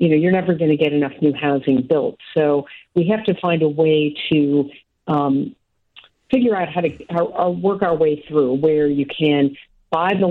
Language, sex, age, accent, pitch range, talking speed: English, female, 50-69, American, 150-185 Hz, 205 wpm